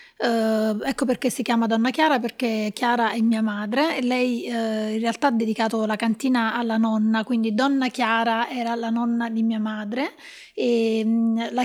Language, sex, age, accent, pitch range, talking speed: Italian, female, 30-49, native, 225-250 Hz, 180 wpm